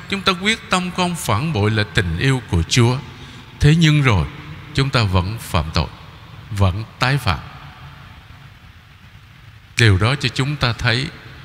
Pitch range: 105-150 Hz